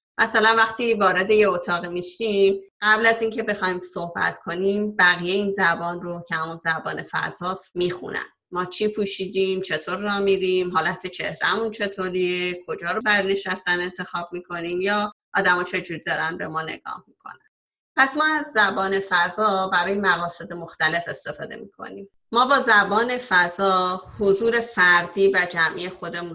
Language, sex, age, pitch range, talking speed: Persian, female, 30-49, 170-210 Hz, 140 wpm